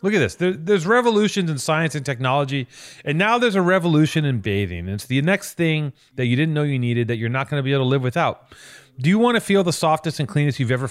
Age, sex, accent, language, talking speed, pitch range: 30-49, male, American, English, 250 wpm, 120-160 Hz